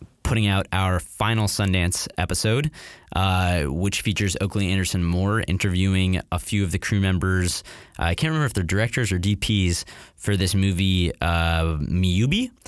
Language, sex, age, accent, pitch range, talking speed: English, male, 20-39, American, 90-110 Hz, 155 wpm